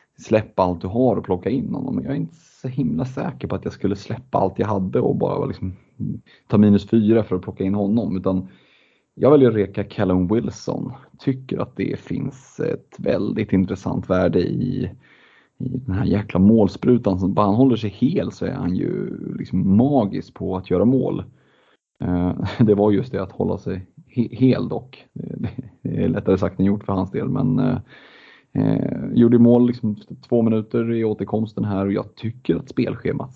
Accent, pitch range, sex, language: native, 95-120 Hz, male, Swedish